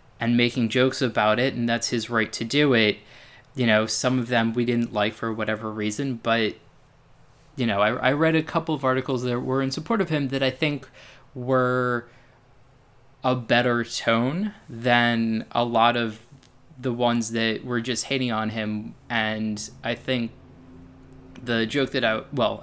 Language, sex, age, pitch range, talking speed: English, male, 20-39, 110-130 Hz, 175 wpm